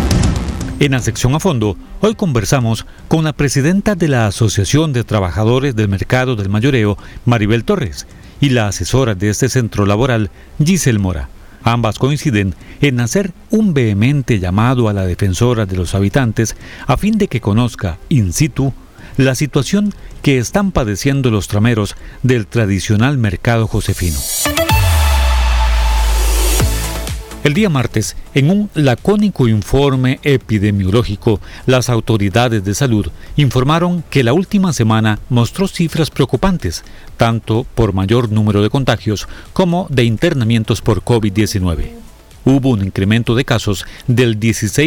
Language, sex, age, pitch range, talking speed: Spanish, male, 40-59, 100-140 Hz, 130 wpm